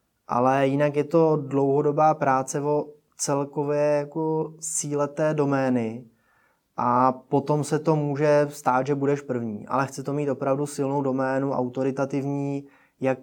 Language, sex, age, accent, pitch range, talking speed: Czech, male, 20-39, native, 125-145 Hz, 125 wpm